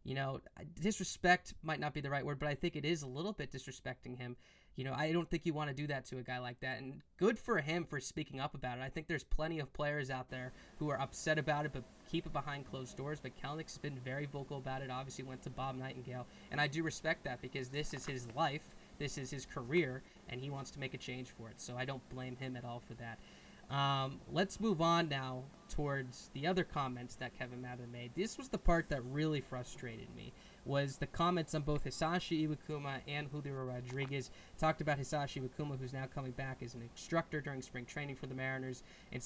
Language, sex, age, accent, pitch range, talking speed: English, male, 20-39, American, 130-150 Hz, 235 wpm